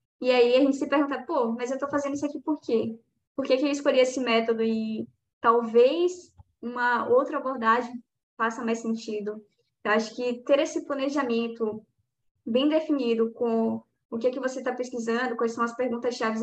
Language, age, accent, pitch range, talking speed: Portuguese, 10-29, Brazilian, 225-260 Hz, 185 wpm